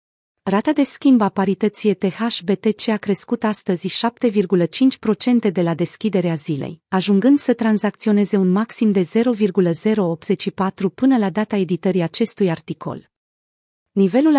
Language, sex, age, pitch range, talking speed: Romanian, female, 30-49, 180-225 Hz, 115 wpm